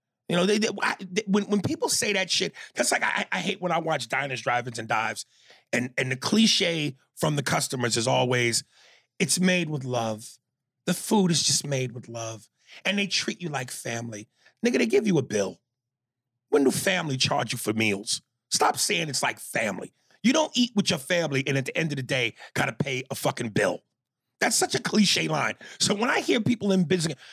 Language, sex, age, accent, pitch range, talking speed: English, male, 30-49, American, 130-195 Hz, 215 wpm